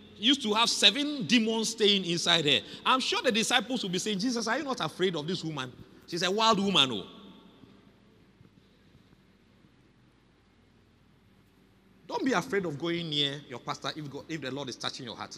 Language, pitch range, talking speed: English, 150-235 Hz, 175 wpm